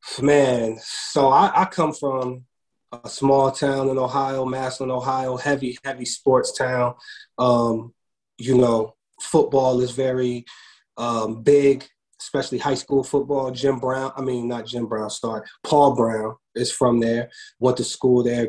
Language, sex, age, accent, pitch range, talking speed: English, male, 30-49, American, 120-135 Hz, 150 wpm